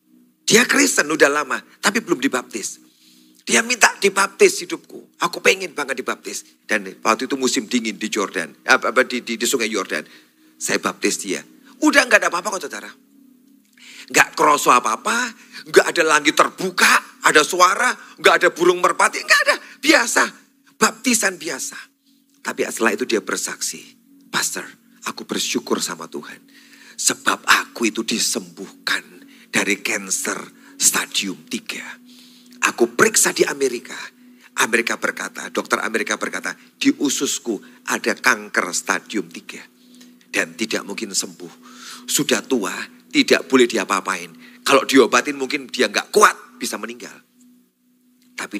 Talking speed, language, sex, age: 130 wpm, Indonesian, male, 40-59